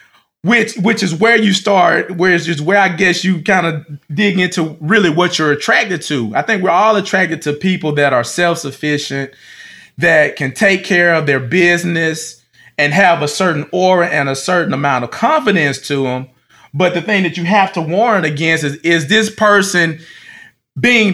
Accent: American